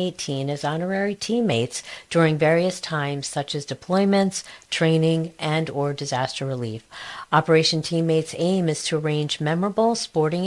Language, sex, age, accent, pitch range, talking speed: English, female, 40-59, American, 140-175 Hz, 125 wpm